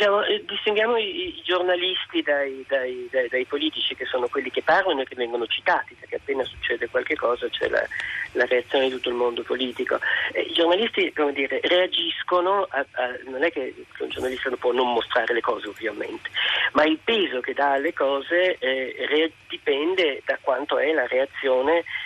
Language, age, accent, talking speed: Italian, 40-59, native, 160 wpm